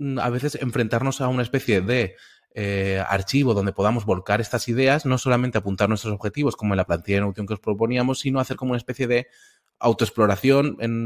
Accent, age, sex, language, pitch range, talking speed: Spanish, 20-39, male, English, 95-120 Hz, 195 wpm